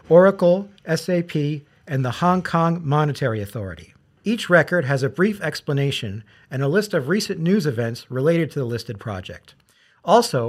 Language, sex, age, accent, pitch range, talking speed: English, male, 40-59, American, 130-175 Hz, 155 wpm